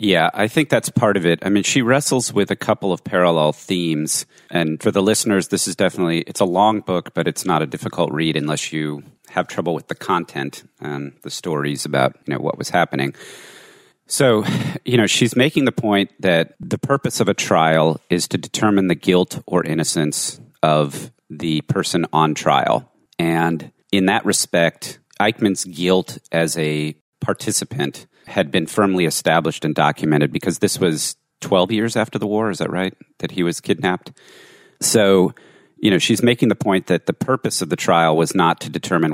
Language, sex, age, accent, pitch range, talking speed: English, male, 40-59, American, 75-100 Hz, 185 wpm